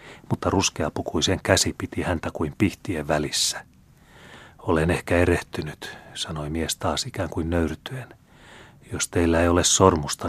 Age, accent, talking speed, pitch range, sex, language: 30-49, native, 130 wpm, 85-105 Hz, male, Finnish